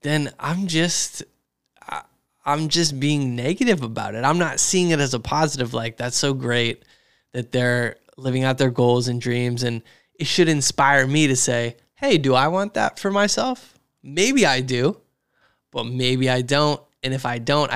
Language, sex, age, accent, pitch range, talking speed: English, male, 20-39, American, 125-145 Hz, 180 wpm